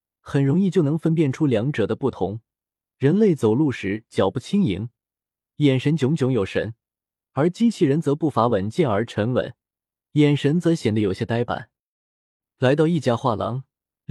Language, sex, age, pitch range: Chinese, male, 20-39, 110-150 Hz